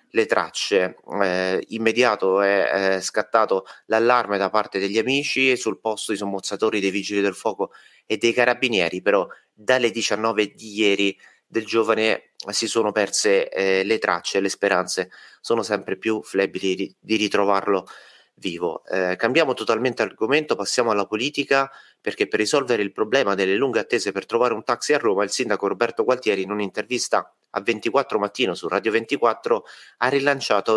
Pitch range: 100-120 Hz